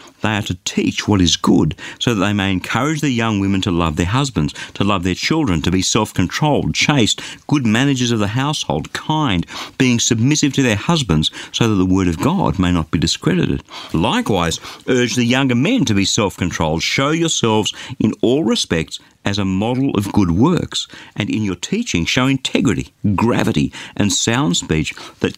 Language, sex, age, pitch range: English, male, 50-69, 95-135 Hz